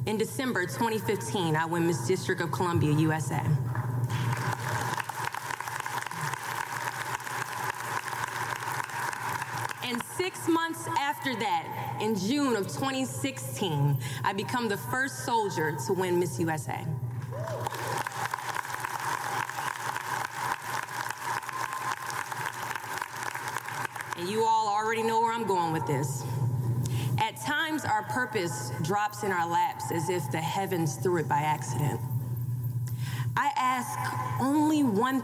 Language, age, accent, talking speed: English, 20-39, American, 100 wpm